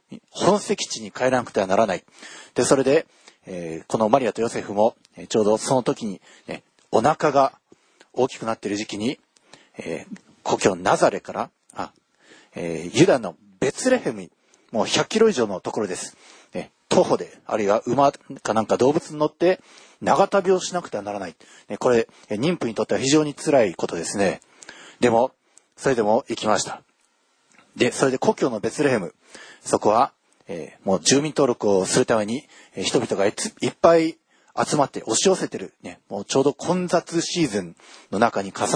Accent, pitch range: native, 115-190 Hz